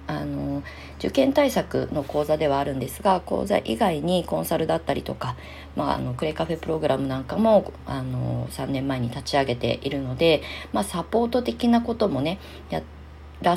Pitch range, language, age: 130-195 Hz, Japanese, 40-59